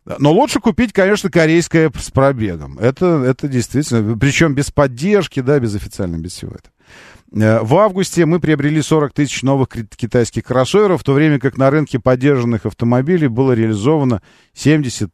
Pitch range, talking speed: 100-145 Hz, 155 wpm